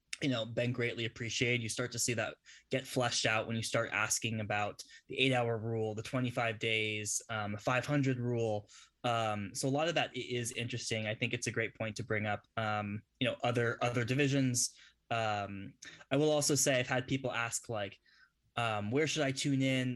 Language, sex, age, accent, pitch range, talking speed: English, male, 10-29, American, 110-130 Hz, 200 wpm